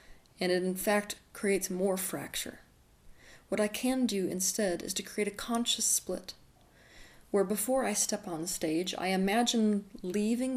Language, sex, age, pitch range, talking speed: English, female, 30-49, 175-210 Hz, 155 wpm